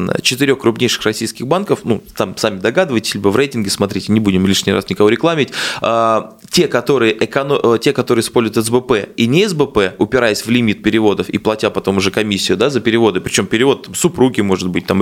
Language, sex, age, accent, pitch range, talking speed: Russian, male, 20-39, native, 105-135 Hz, 185 wpm